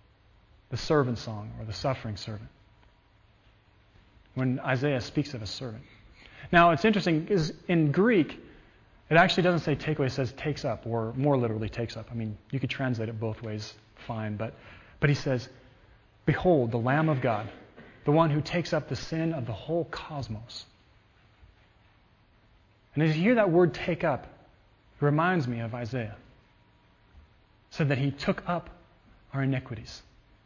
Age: 30-49